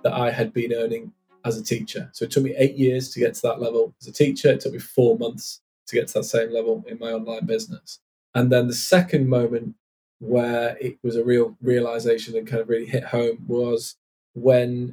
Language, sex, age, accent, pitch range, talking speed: English, male, 20-39, British, 115-135 Hz, 225 wpm